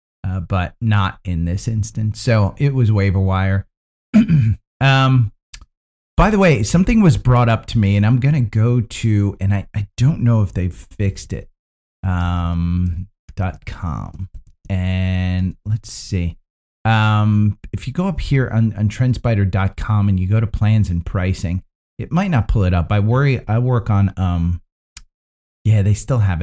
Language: English